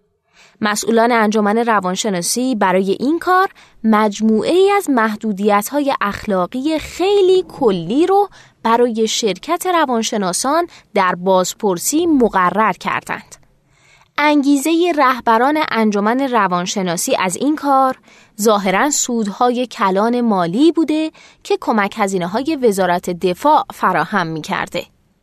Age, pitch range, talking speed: 20-39, 200-285 Hz, 100 wpm